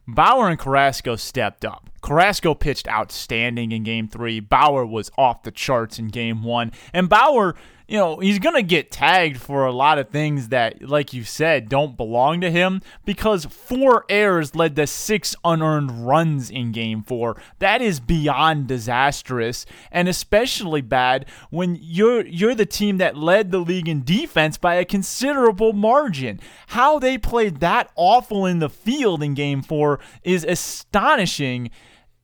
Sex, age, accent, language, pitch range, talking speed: male, 20-39, American, English, 130-210 Hz, 160 wpm